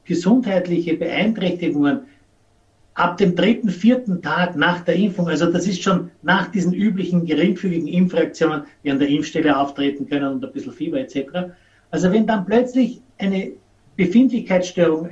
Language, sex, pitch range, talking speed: German, male, 155-200 Hz, 145 wpm